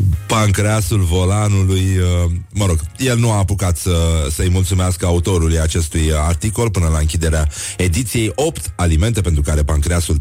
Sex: male